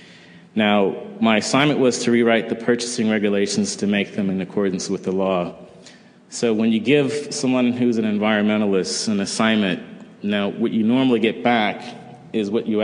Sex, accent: male, American